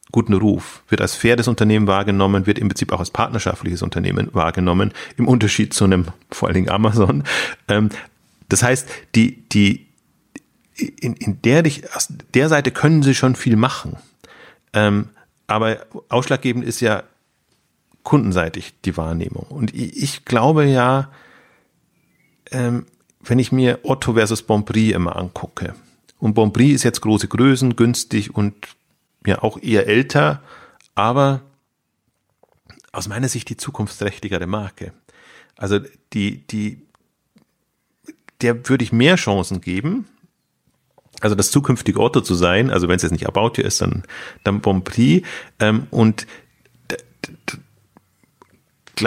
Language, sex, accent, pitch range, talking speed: German, male, German, 100-125 Hz, 130 wpm